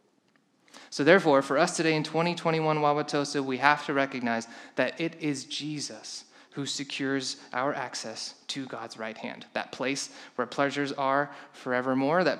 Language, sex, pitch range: English, male, 135-175 Hz